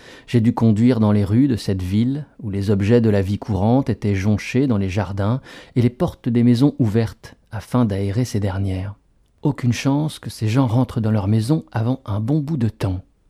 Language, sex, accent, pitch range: French, male, French, 105-130 Hz